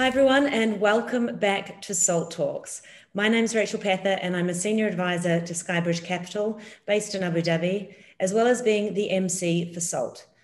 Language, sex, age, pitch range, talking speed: English, female, 30-49, 170-200 Hz, 190 wpm